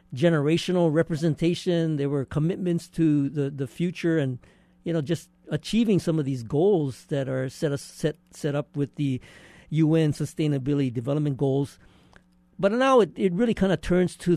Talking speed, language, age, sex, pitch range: 165 wpm, English, 50-69, male, 135-170 Hz